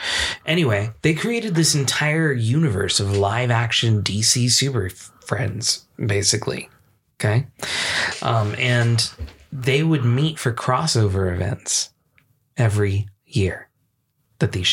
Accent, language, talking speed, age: American, English, 105 wpm, 20-39